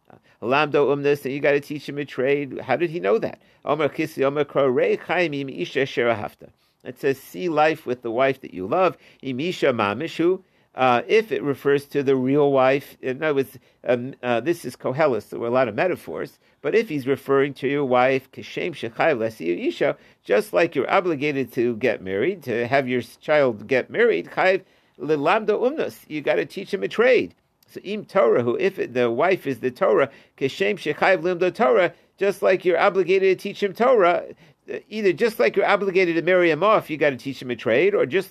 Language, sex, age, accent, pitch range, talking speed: English, male, 50-69, American, 135-190 Hz, 175 wpm